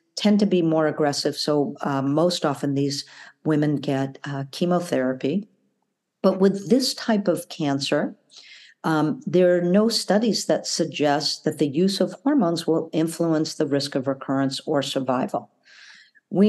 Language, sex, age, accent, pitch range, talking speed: English, female, 50-69, American, 150-185 Hz, 150 wpm